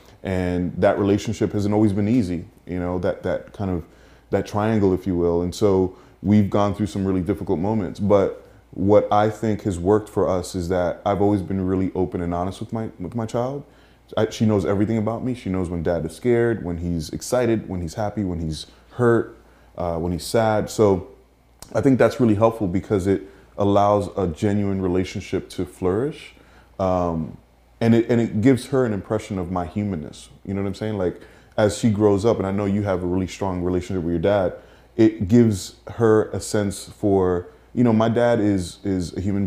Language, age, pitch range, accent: English, 20-39, 90-105 Hz, American